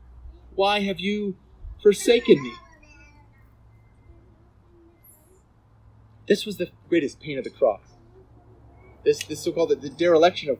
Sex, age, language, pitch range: male, 30-49, English, 105-180 Hz